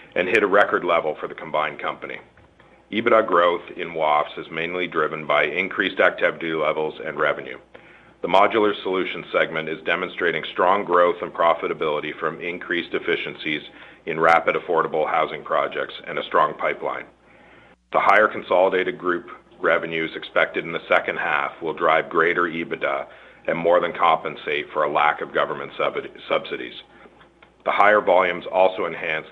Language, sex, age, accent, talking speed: English, male, 40-59, American, 150 wpm